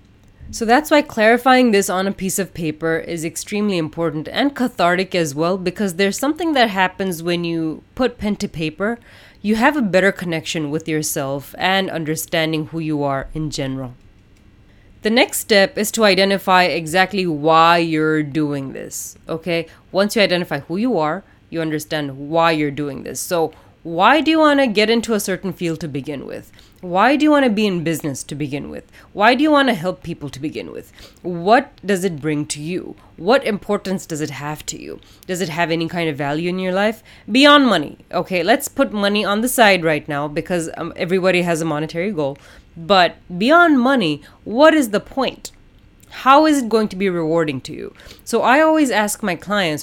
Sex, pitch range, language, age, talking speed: female, 155-210 Hz, English, 20-39, 195 wpm